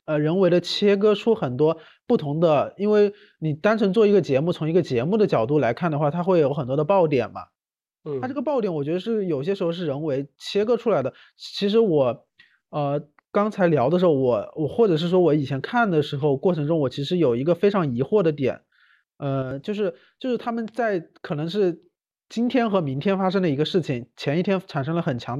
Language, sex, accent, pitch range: Chinese, male, native, 145-200 Hz